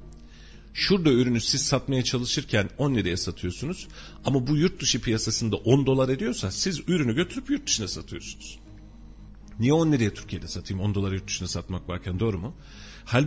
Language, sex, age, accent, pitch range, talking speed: Turkish, male, 40-59, native, 105-145 Hz, 165 wpm